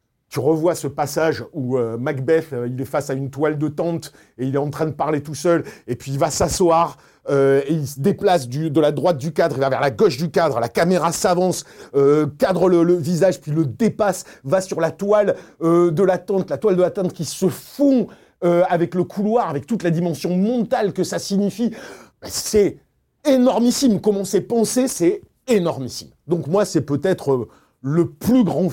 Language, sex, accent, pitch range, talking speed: French, male, French, 130-180 Hz, 205 wpm